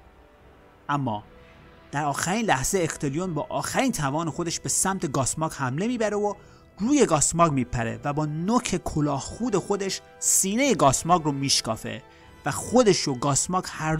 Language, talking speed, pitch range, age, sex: Persian, 140 wpm, 120-180 Hz, 30-49, male